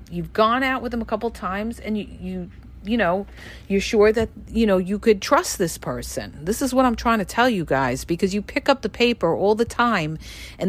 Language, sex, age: English, female, 50-69